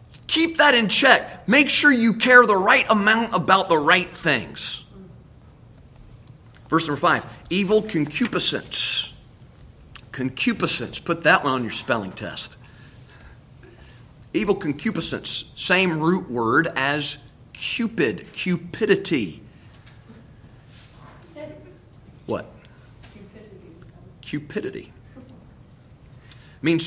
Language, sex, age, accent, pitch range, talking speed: English, male, 30-49, American, 125-185 Hz, 90 wpm